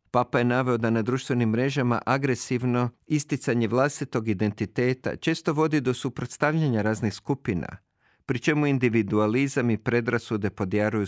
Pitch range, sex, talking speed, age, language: 110-140 Hz, male, 125 wpm, 50-69, Croatian